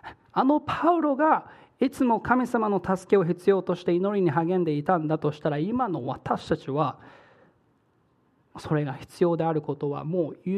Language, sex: Japanese, male